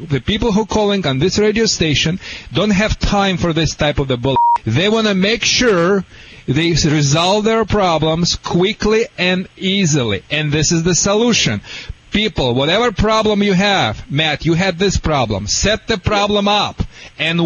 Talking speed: 170 wpm